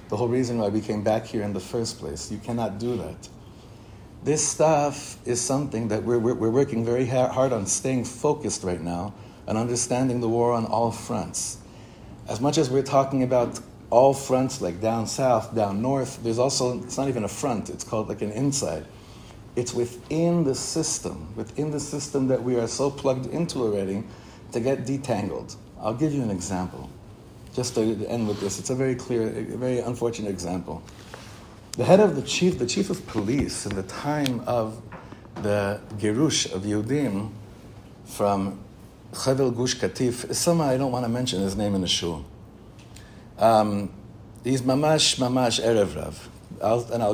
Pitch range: 105-130 Hz